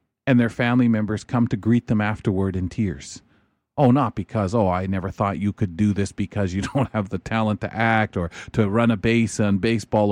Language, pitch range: English, 100-115 Hz